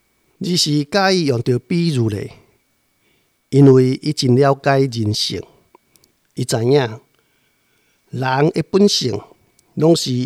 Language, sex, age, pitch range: Chinese, male, 50-69, 125-160 Hz